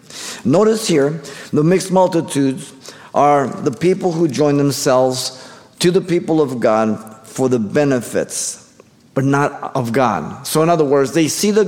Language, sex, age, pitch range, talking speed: English, male, 50-69, 130-170 Hz, 155 wpm